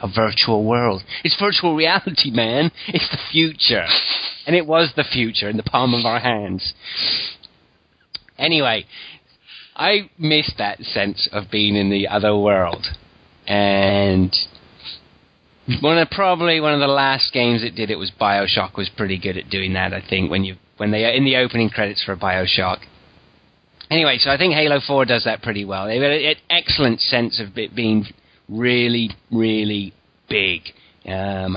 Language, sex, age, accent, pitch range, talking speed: English, male, 30-49, British, 100-130 Hz, 165 wpm